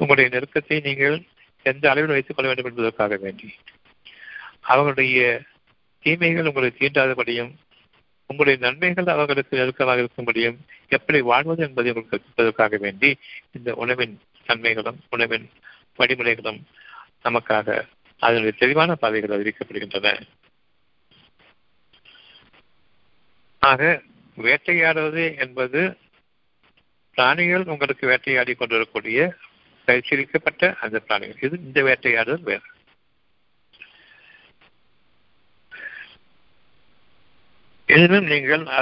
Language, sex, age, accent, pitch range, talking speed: Tamil, male, 60-79, native, 120-155 Hz, 65 wpm